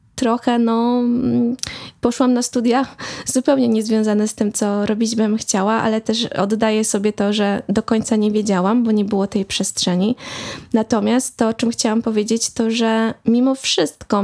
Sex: female